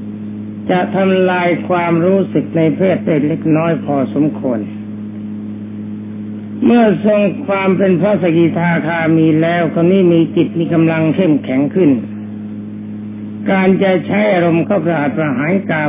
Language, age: Thai, 60-79